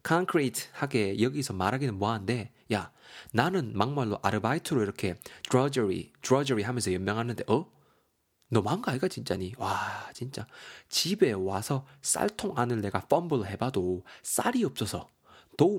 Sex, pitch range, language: male, 105-150 Hz, Korean